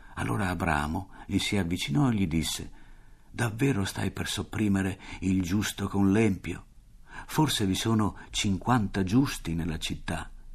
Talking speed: 130 wpm